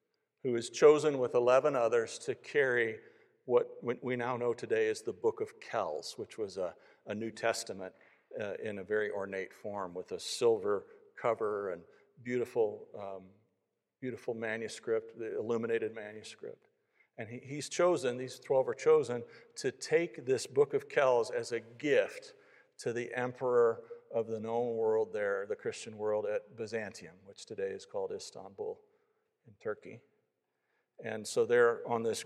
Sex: male